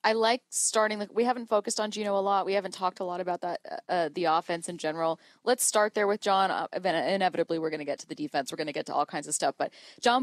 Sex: female